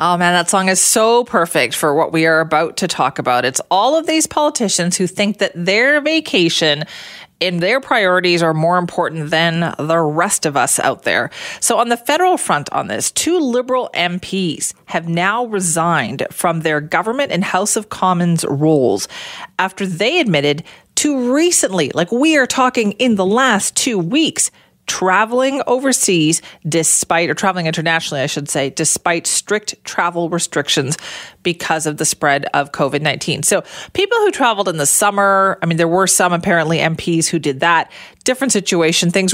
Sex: female